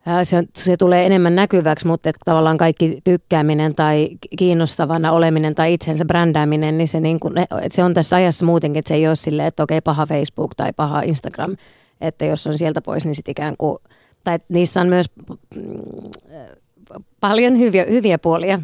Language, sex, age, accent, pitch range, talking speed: Finnish, female, 30-49, native, 155-180 Hz, 175 wpm